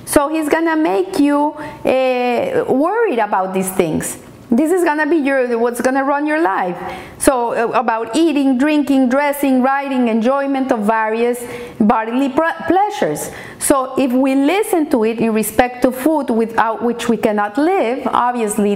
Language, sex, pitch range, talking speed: English, female, 225-295 Hz, 150 wpm